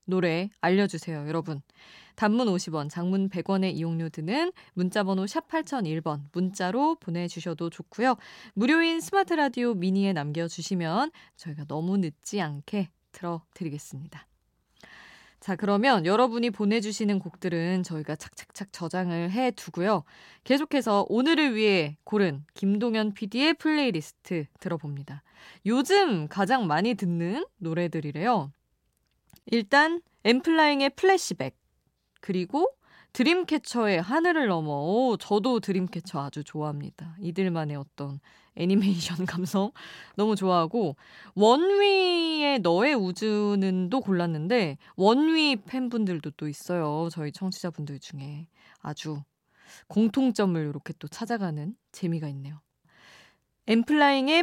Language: Korean